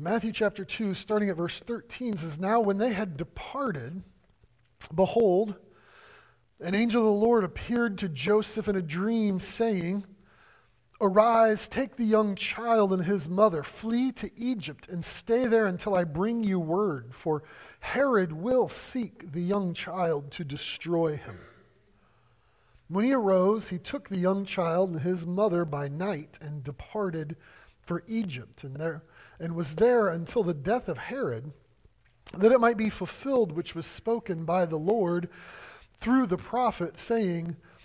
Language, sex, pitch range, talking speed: English, male, 160-220 Hz, 155 wpm